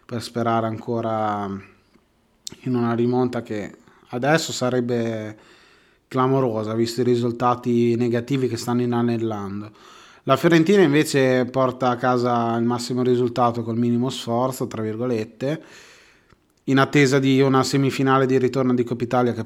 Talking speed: 125 wpm